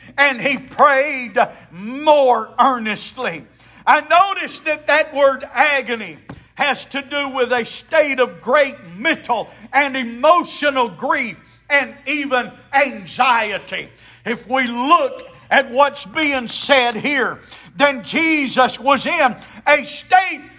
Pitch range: 220-290 Hz